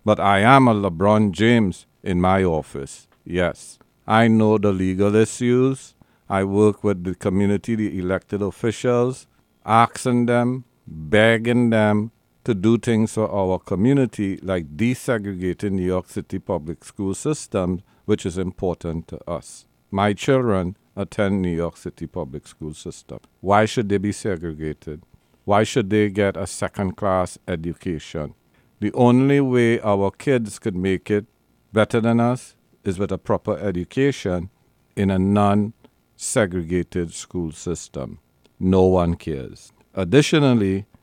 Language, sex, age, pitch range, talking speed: English, male, 50-69, 95-115 Hz, 135 wpm